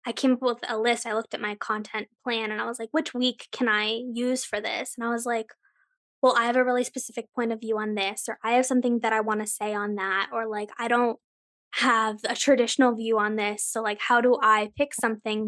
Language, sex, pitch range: English, female, 215-245 Hz